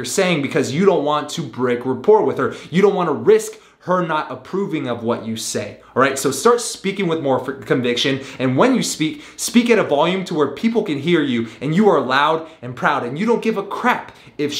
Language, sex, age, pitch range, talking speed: English, male, 20-39, 135-200 Hz, 235 wpm